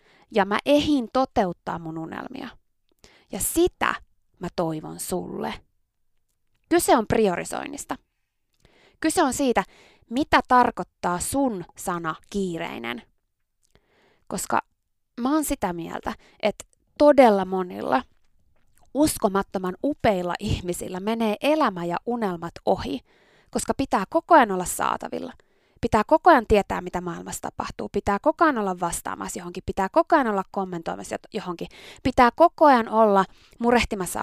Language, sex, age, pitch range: Finnish, female, 20-39, 185-255 Hz